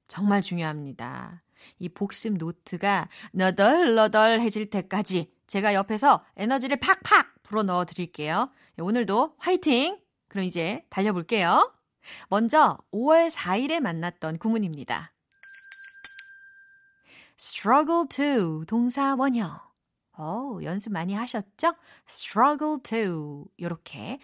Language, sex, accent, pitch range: Korean, female, native, 180-275 Hz